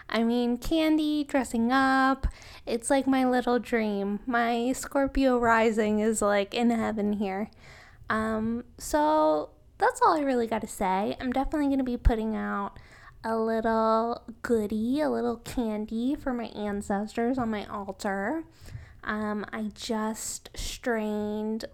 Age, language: 10-29, English